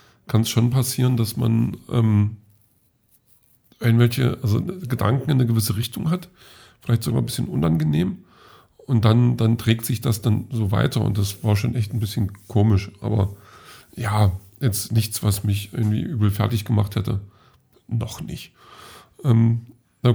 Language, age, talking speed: German, 50-69, 155 wpm